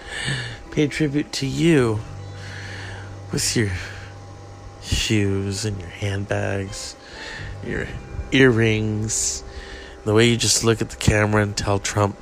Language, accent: English, American